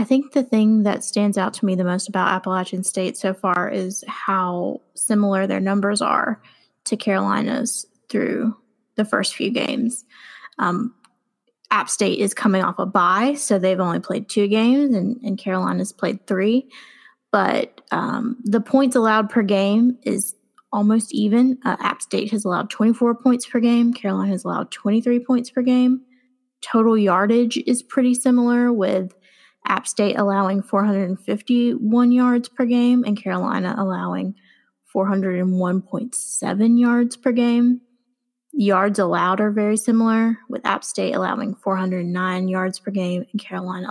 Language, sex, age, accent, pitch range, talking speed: English, female, 20-39, American, 190-245 Hz, 150 wpm